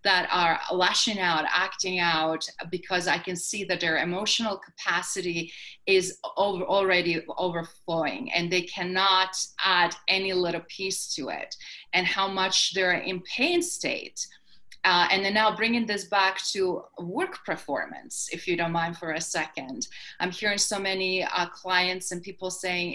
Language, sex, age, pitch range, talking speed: English, female, 30-49, 180-205 Hz, 155 wpm